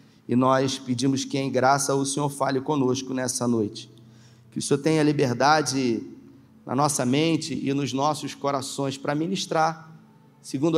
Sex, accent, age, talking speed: male, Brazilian, 40-59, 150 wpm